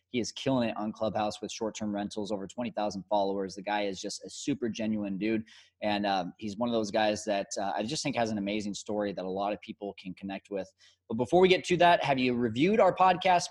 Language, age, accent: English, 20-39, American